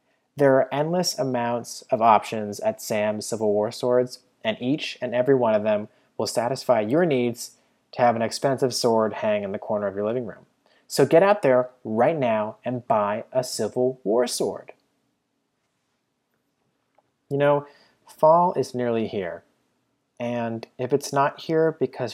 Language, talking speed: English, 160 wpm